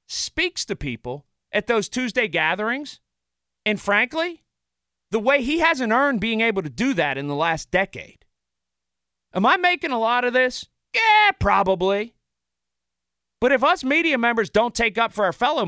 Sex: male